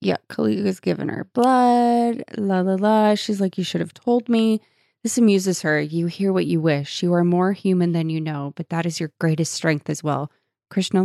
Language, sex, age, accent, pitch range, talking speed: English, female, 20-39, American, 155-185 Hz, 215 wpm